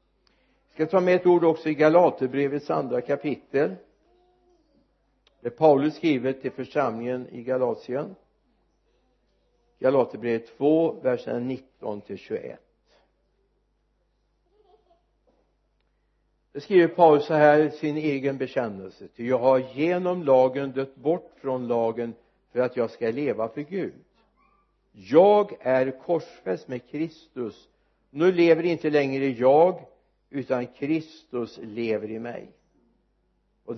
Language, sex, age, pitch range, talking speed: Swedish, male, 60-79, 125-160 Hz, 110 wpm